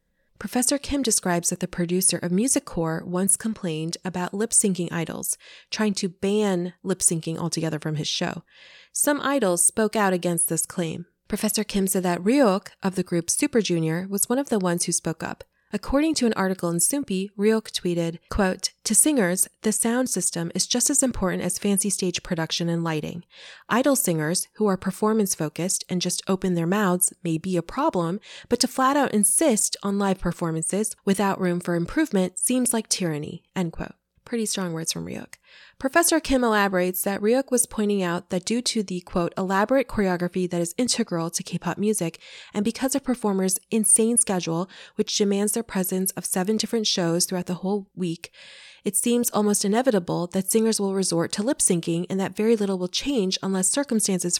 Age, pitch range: 20-39, 175-220 Hz